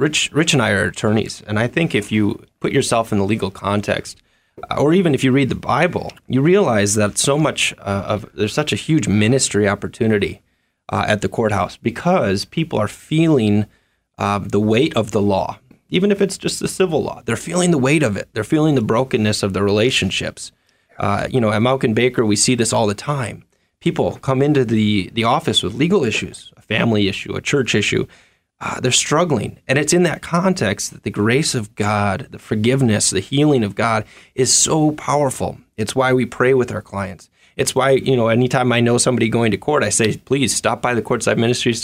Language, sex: English, male